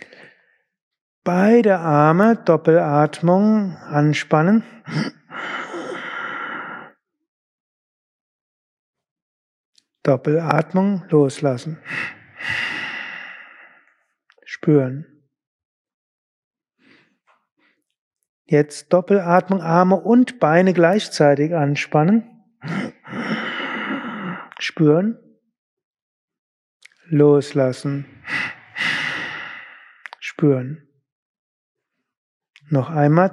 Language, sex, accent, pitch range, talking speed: German, male, German, 145-200 Hz, 35 wpm